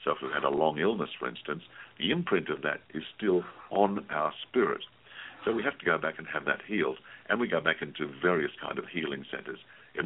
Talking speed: 235 wpm